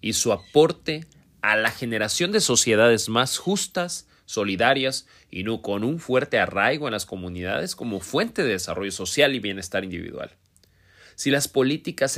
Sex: male